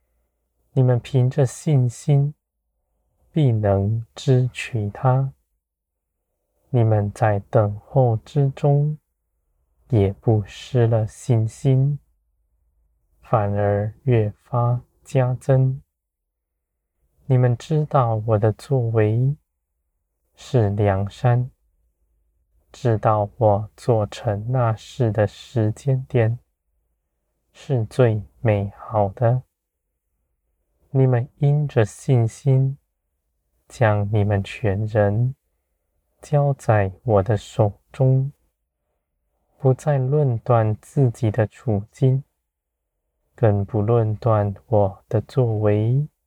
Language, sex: Chinese, male